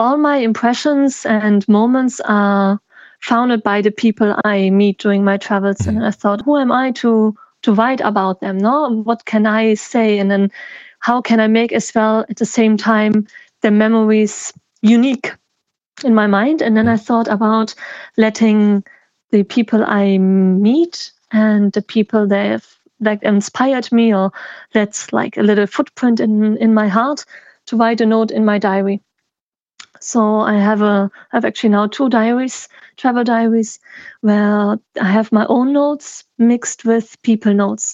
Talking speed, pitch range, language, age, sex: 165 wpm, 210-235 Hz, English, 30-49, female